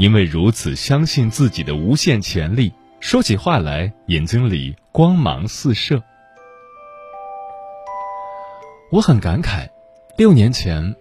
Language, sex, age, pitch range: Chinese, male, 30-49, 90-150 Hz